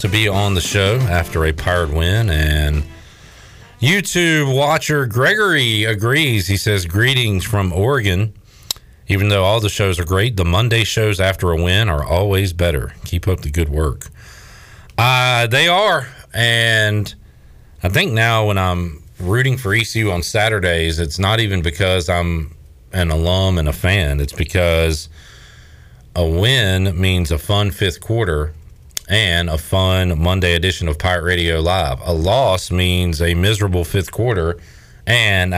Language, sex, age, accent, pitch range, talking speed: English, male, 40-59, American, 85-110 Hz, 155 wpm